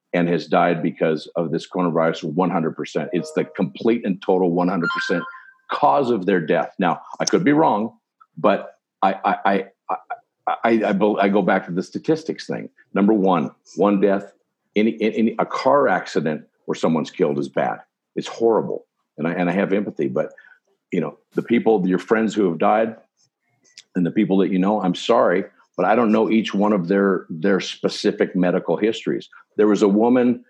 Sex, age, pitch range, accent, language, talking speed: male, 50-69, 90-110 Hz, American, English, 185 wpm